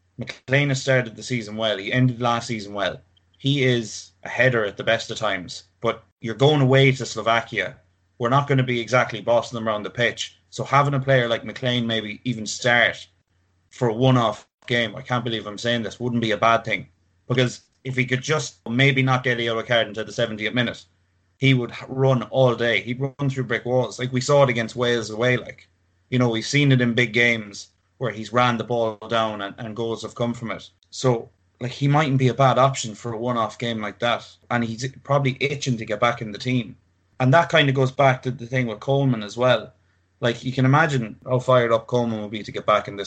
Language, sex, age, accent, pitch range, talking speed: English, male, 30-49, Irish, 110-130 Hz, 235 wpm